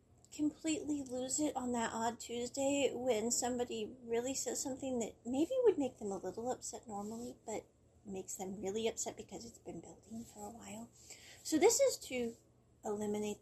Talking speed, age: 170 wpm, 30-49